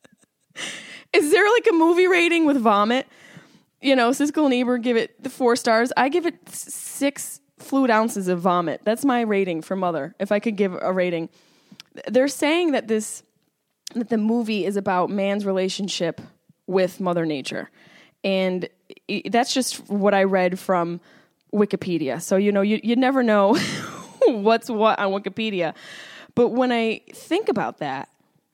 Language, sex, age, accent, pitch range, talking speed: English, female, 10-29, American, 190-255 Hz, 160 wpm